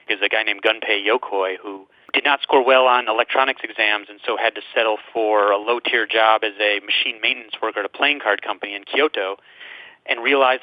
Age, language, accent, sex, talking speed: 30-49, English, American, male, 210 wpm